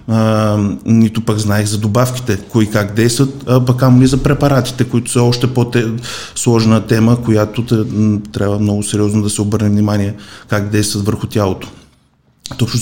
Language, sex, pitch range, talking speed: Bulgarian, male, 105-125 Hz, 140 wpm